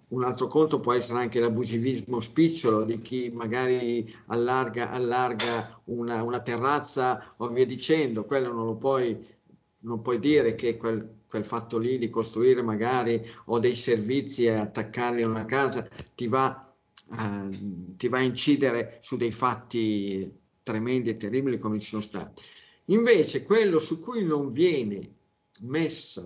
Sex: male